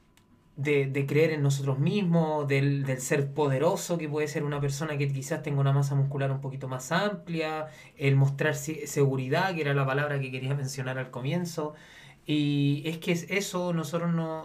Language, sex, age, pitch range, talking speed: Spanish, male, 20-39, 135-160 Hz, 185 wpm